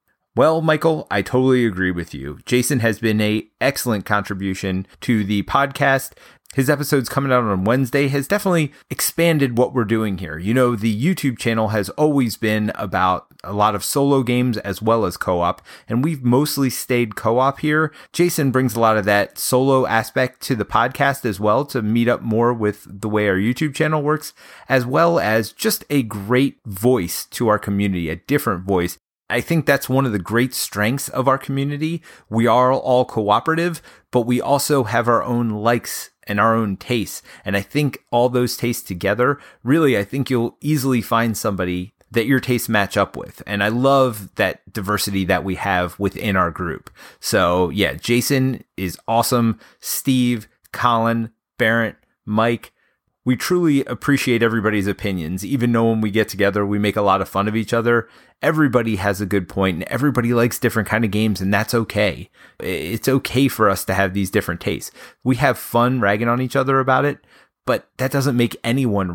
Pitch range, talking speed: 105-135 Hz, 185 wpm